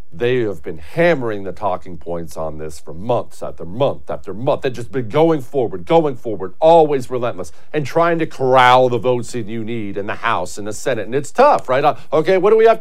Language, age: English, 50-69